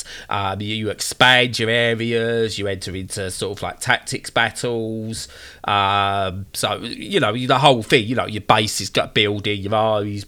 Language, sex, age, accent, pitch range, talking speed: English, male, 20-39, British, 105-140 Hz, 175 wpm